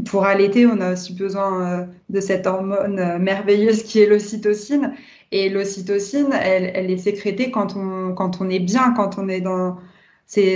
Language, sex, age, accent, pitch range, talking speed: French, female, 20-39, French, 195-230 Hz, 180 wpm